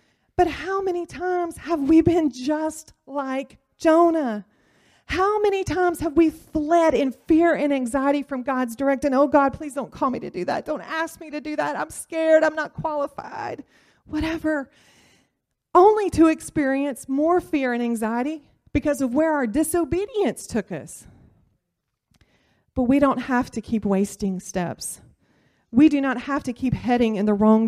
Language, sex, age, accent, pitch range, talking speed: English, female, 40-59, American, 205-290 Hz, 165 wpm